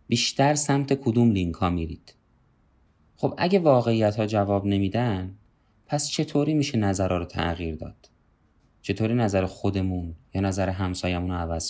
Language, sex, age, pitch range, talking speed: Persian, male, 20-39, 100-135 Hz, 140 wpm